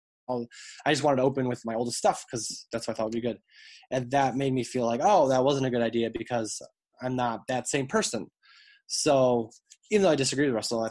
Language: English